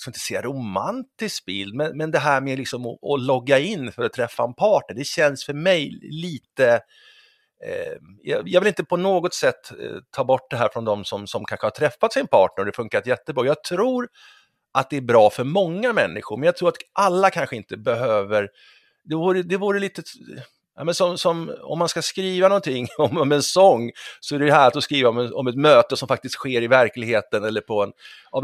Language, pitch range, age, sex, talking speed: Swedish, 120-190 Hz, 50-69, male, 205 wpm